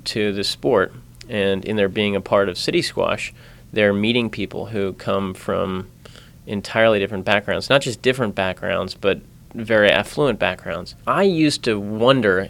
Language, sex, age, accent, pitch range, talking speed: English, male, 30-49, American, 100-110 Hz, 160 wpm